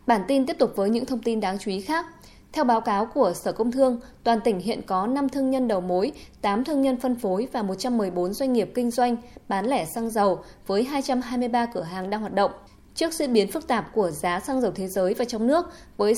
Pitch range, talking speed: 200-260 Hz, 240 wpm